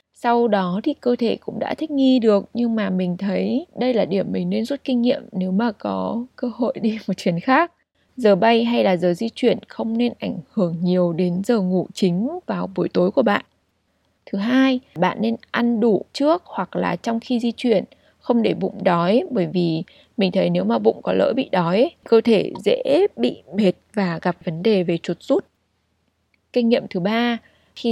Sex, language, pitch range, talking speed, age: female, Vietnamese, 180-240 Hz, 210 wpm, 20-39